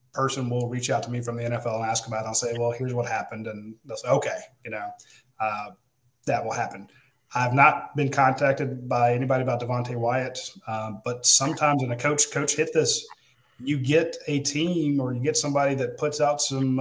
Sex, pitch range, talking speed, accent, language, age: male, 125-165 Hz, 210 wpm, American, English, 30-49